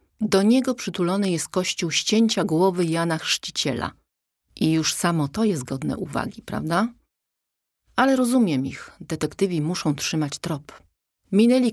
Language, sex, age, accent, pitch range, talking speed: Polish, female, 40-59, native, 155-210 Hz, 130 wpm